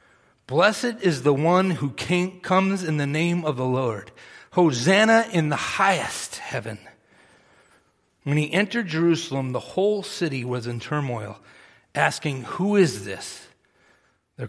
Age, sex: 40-59, male